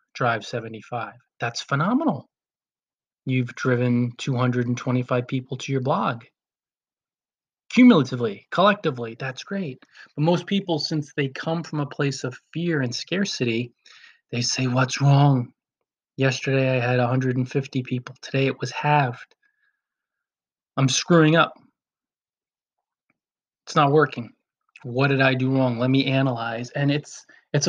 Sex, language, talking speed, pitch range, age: male, English, 125 wpm, 125-150 Hz, 20-39